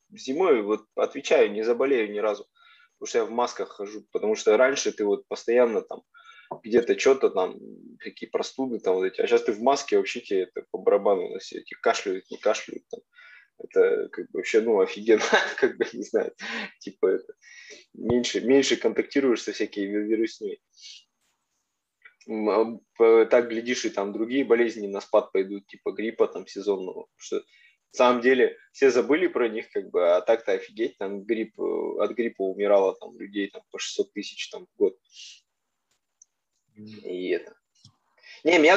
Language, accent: Russian, native